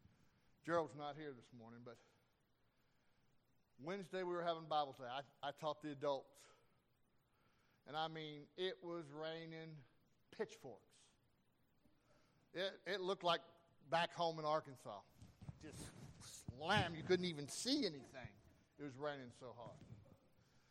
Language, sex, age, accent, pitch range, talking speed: English, male, 50-69, American, 145-185 Hz, 130 wpm